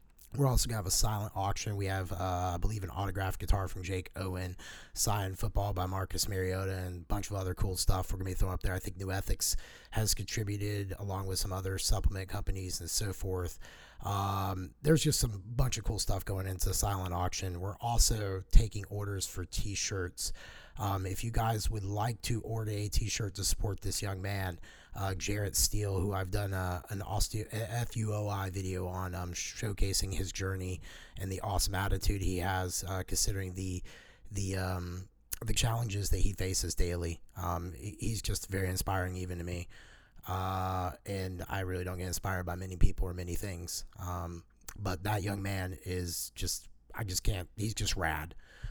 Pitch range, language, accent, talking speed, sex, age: 90-105 Hz, English, American, 185 wpm, male, 30-49